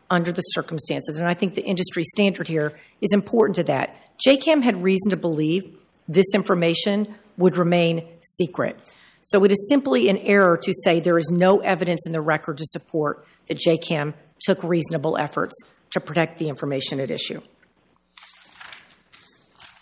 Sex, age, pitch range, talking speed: female, 40-59, 165-205 Hz, 155 wpm